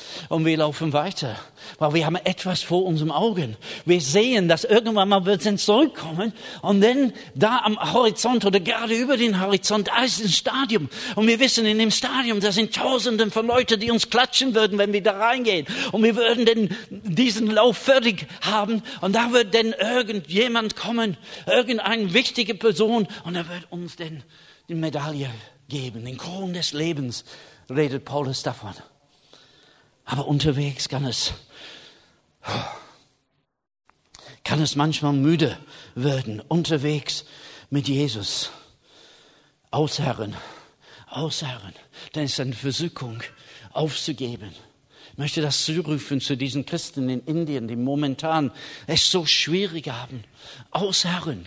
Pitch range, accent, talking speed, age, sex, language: 145-215 Hz, German, 140 wpm, 50-69, male, German